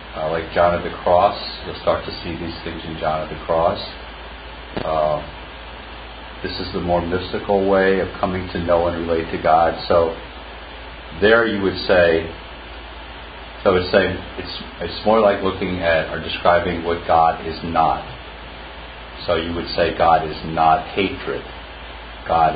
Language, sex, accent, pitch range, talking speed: English, male, American, 75-90 Hz, 165 wpm